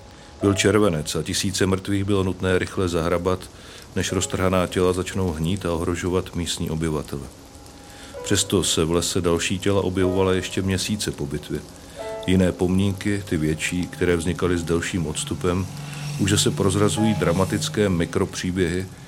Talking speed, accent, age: 135 wpm, native, 40-59